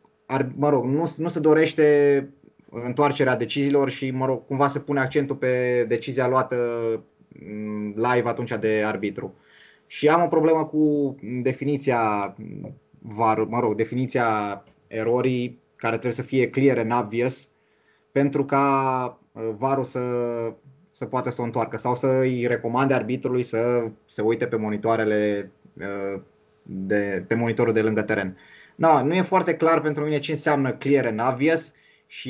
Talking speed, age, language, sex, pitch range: 145 wpm, 20-39, Romanian, male, 115-145 Hz